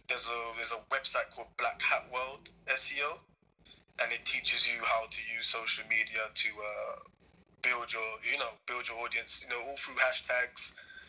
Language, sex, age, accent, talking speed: English, male, 20-39, British, 180 wpm